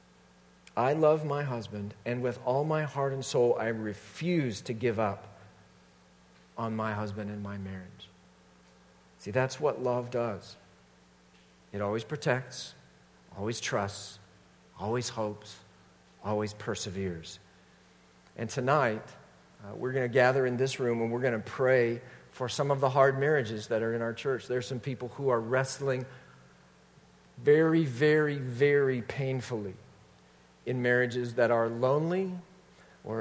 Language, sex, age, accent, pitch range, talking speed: English, male, 50-69, American, 100-140 Hz, 145 wpm